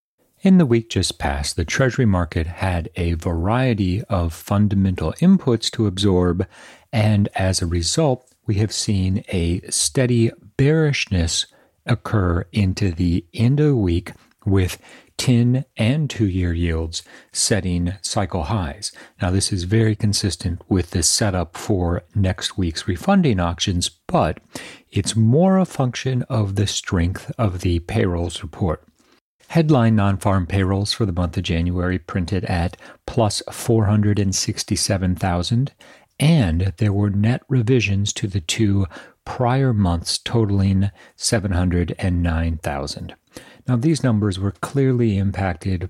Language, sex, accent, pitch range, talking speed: English, male, American, 90-115 Hz, 125 wpm